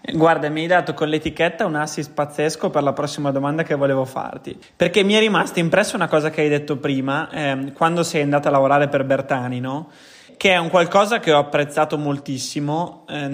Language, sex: Italian, male